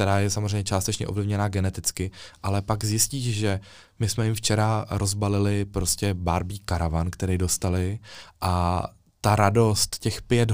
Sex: male